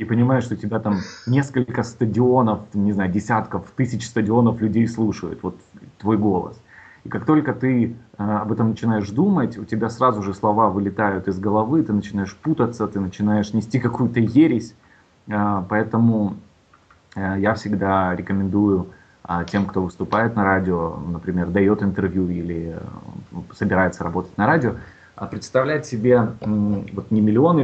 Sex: male